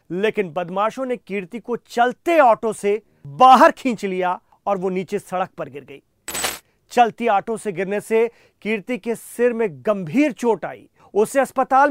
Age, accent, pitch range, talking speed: 40-59, native, 190-245 Hz, 160 wpm